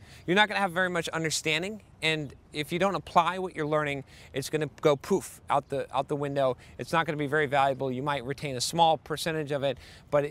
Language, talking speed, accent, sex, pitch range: English, 245 wpm, American, male, 140-175 Hz